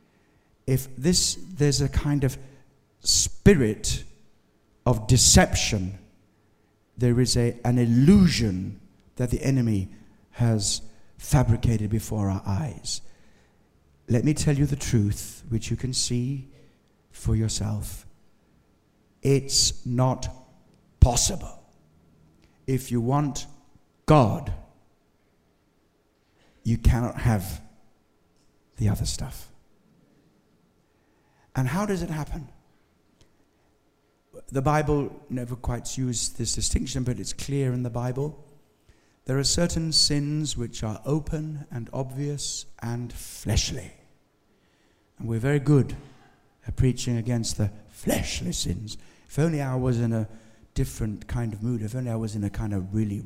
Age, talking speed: 60-79, 120 wpm